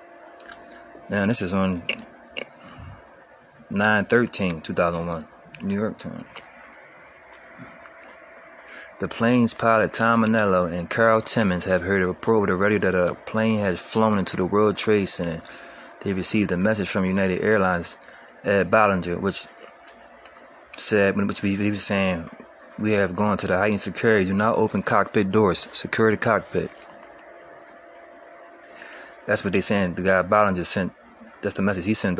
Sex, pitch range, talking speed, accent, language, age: male, 95-110 Hz, 140 wpm, American, English, 30-49